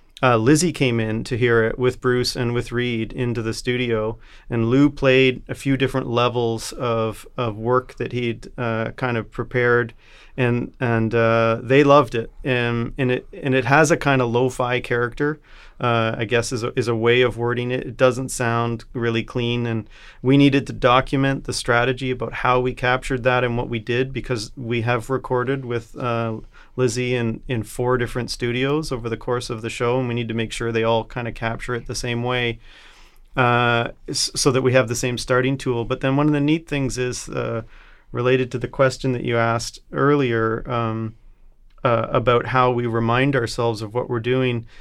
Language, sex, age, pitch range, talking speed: English, male, 40-59, 115-130 Hz, 200 wpm